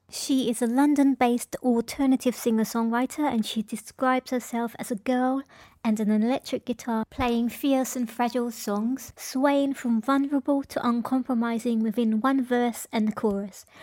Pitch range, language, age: 225-260 Hz, English, 20-39